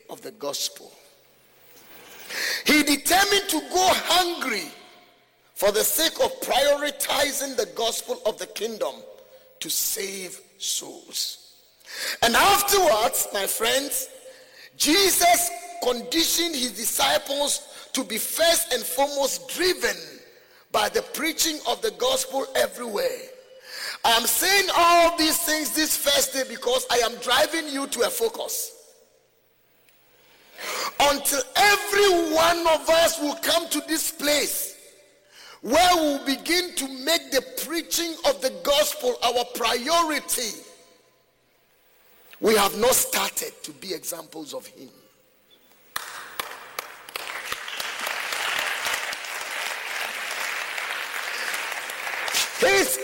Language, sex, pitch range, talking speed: English, male, 275-395 Hz, 100 wpm